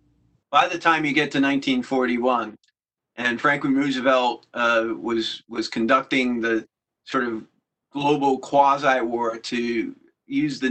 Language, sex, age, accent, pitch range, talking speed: English, male, 40-59, American, 115-140 Hz, 125 wpm